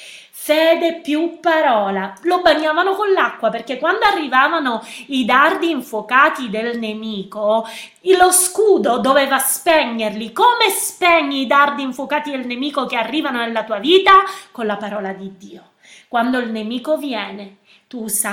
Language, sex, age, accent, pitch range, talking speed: Italian, female, 20-39, native, 225-330 Hz, 135 wpm